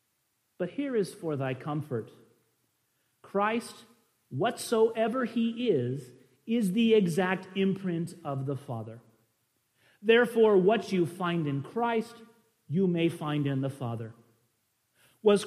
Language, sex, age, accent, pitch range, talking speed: English, male, 40-59, American, 125-215 Hz, 115 wpm